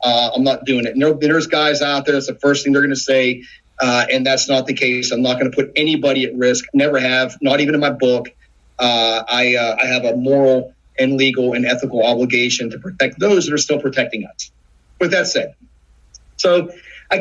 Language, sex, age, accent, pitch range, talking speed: English, male, 40-59, American, 125-145 Hz, 225 wpm